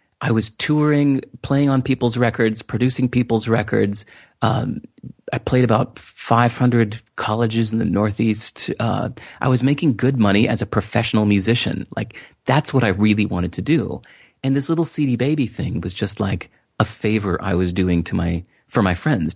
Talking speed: 175 wpm